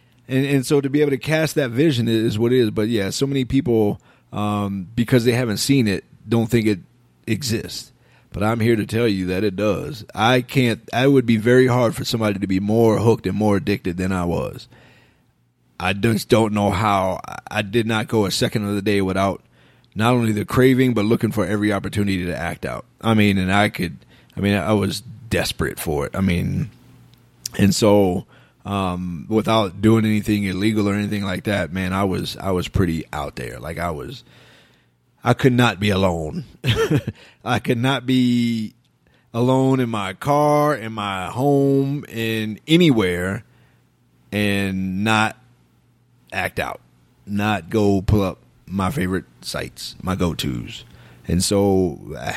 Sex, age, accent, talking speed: male, 30-49, American, 175 wpm